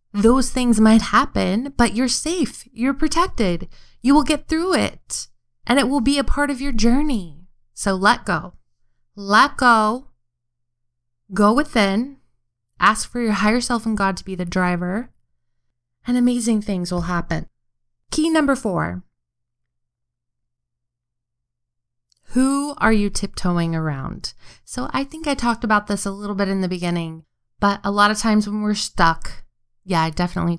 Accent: American